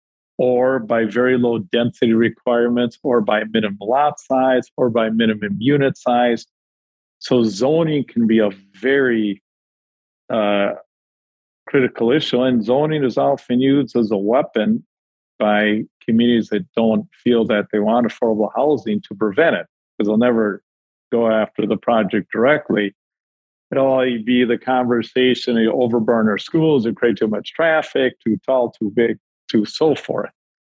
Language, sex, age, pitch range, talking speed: English, male, 50-69, 110-125 Hz, 145 wpm